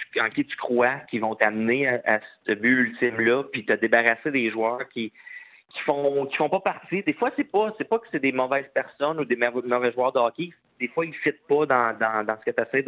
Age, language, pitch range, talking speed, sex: 30-49, French, 110-140 Hz, 265 wpm, male